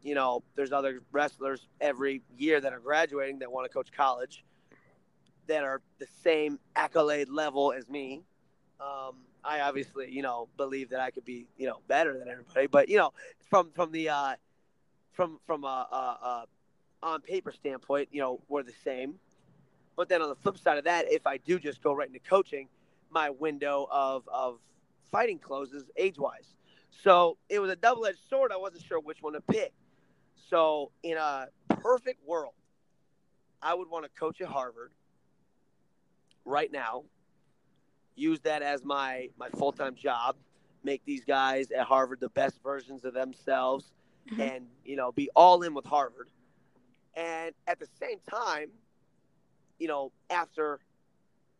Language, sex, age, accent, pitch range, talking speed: English, male, 30-49, American, 135-165 Hz, 165 wpm